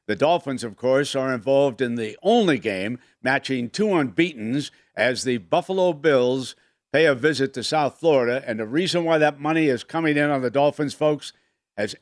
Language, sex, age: English, male, 60-79